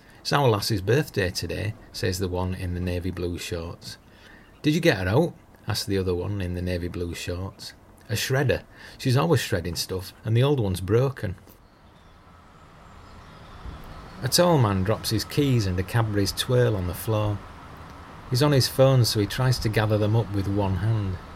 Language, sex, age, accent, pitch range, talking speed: English, male, 40-59, British, 95-120 Hz, 185 wpm